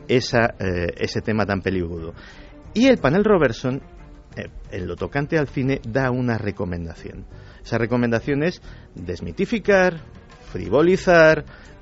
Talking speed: 115 wpm